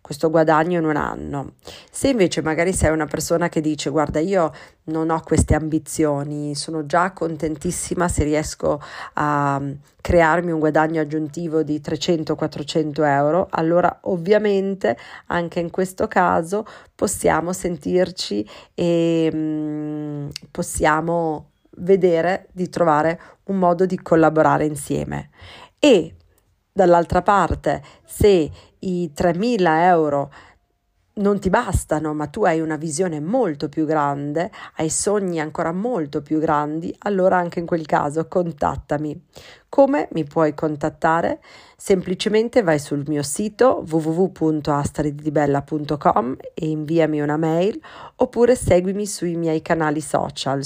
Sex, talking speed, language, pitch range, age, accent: female, 120 wpm, Italian, 150-180 Hz, 40-59, native